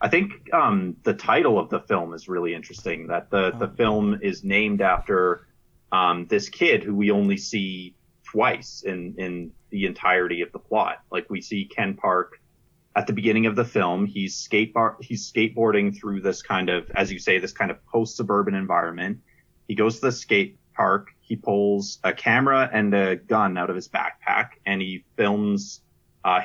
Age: 30-49